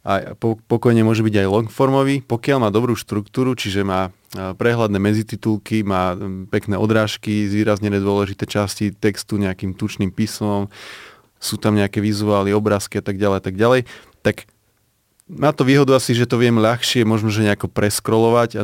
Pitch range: 105-115 Hz